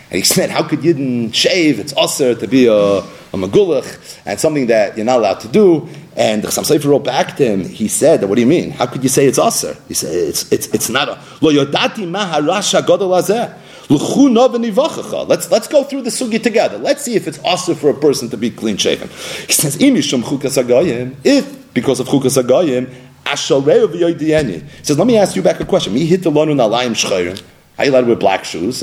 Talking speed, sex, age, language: 185 wpm, male, 40-59, English